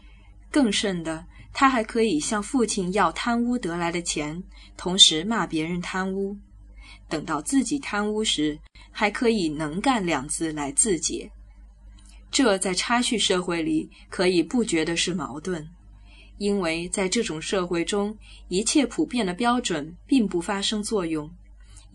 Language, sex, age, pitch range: Chinese, female, 10-29, 165-220 Hz